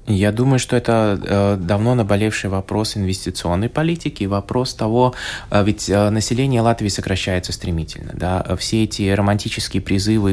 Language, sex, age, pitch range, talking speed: Russian, male, 20-39, 90-105 Hz, 115 wpm